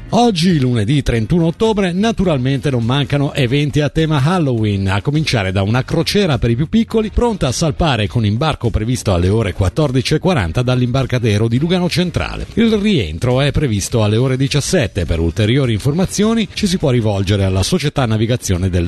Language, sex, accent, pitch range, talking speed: Italian, male, native, 115-170 Hz, 160 wpm